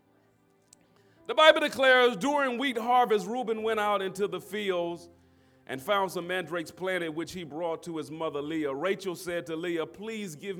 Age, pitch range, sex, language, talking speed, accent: 30-49, 160-200 Hz, male, English, 170 wpm, American